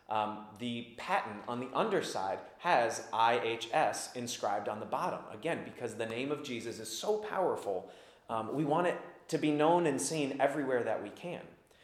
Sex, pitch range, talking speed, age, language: male, 120-175 Hz, 170 wpm, 30-49, English